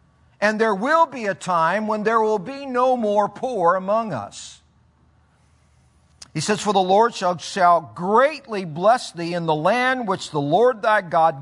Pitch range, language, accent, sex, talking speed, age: 165-220 Hz, English, American, male, 170 wpm, 50-69